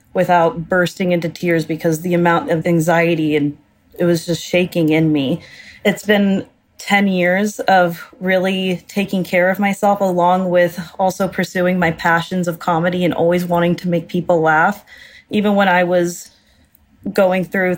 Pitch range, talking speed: 165-185 Hz, 160 wpm